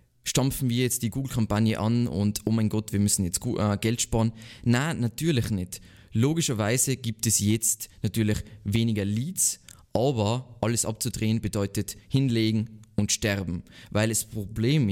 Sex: male